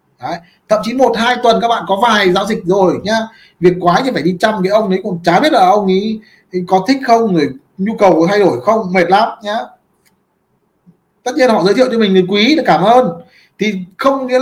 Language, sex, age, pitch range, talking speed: Vietnamese, male, 20-39, 180-230 Hz, 235 wpm